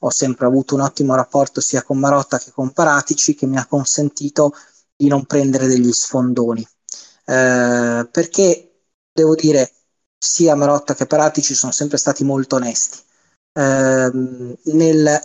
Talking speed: 140 wpm